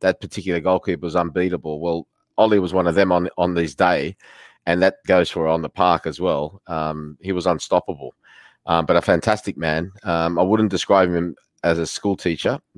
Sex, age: male, 30-49